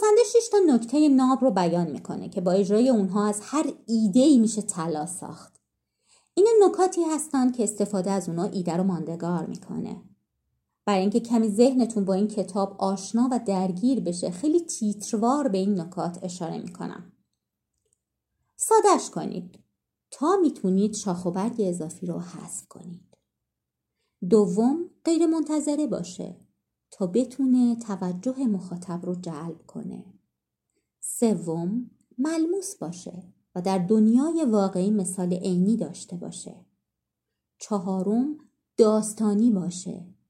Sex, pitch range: female, 190-255 Hz